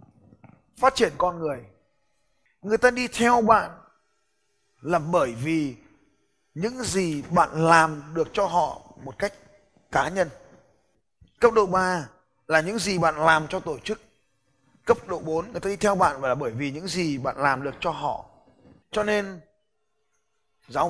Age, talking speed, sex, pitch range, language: 20-39, 160 wpm, male, 150-215 Hz, Vietnamese